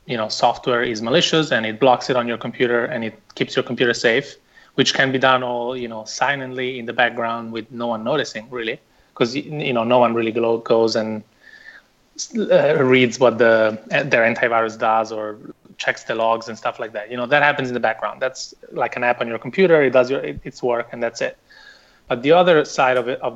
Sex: male